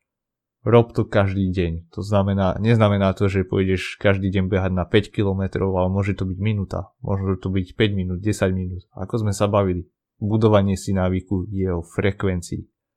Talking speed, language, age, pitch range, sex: 175 wpm, Slovak, 30-49, 95-115 Hz, male